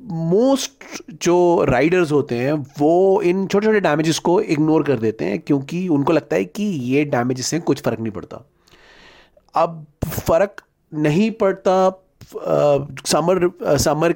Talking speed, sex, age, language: 135 wpm, male, 30-49, English